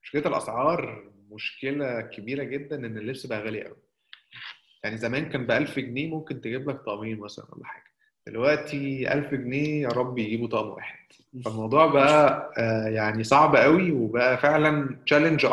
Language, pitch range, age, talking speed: Arabic, 120-155 Hz, 20-39, 150 wpm